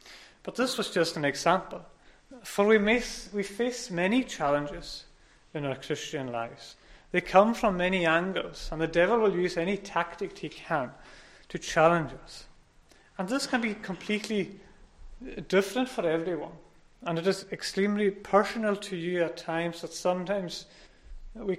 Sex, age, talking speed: male, 30-49, 145 wpm